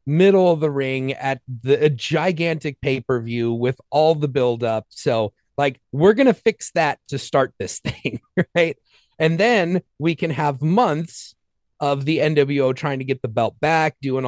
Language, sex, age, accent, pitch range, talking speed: English, male, 30-49, American, 120-155 Hz, 170 wpm